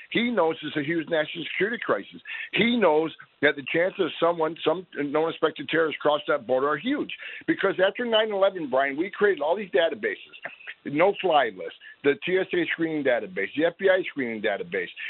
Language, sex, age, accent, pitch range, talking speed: English, male, 60-79, American, 140-215 Hz, 165 wpm